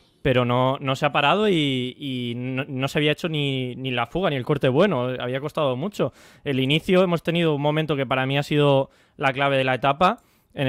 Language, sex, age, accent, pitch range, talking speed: Spanish, male, 20-39, Spanish, 125-160 Hz, 230 wpm